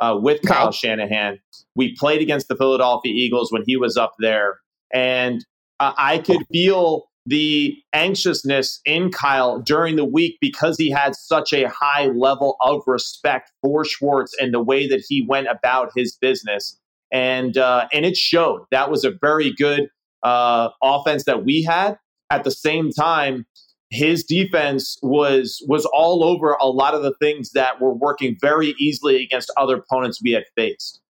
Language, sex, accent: English, male, American